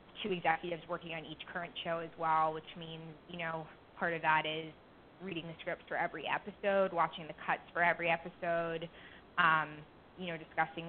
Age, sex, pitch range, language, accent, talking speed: 20-39, female, 160-175 Hz, English, American, 180 wpm